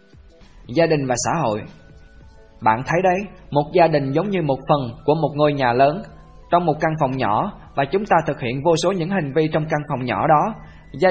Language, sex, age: Vietnamese, male, 20-39